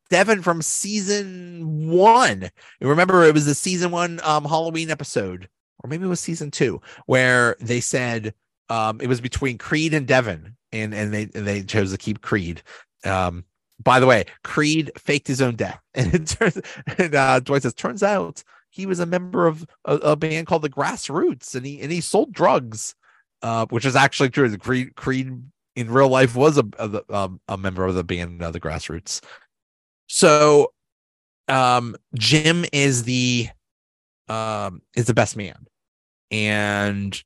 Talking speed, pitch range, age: 175 wpm, 105-140 Hz, 30-49